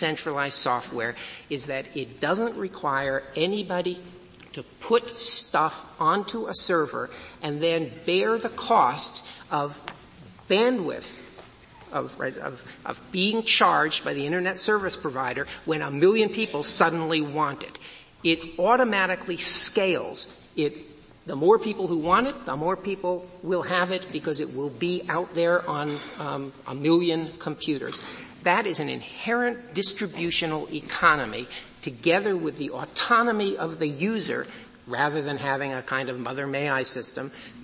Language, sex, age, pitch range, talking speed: English, male, 50-69, 150-190 Hz, 135 wpm